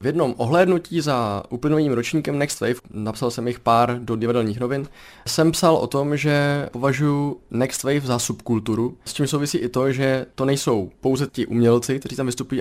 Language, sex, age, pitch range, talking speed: Czech, male, 20-39, 120-145 Hz, 185 wpm